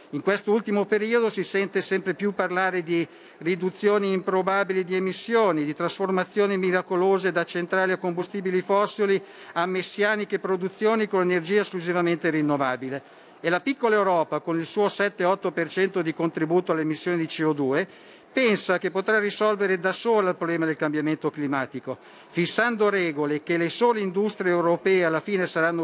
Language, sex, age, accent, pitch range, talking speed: Italian, male, 50-69, native, 165-200 Hz, 150 wpm